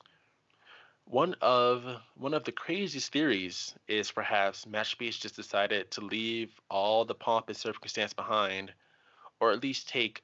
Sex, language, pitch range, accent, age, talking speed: male, English, 100-115 Hz, American, 20-39, 140 wpm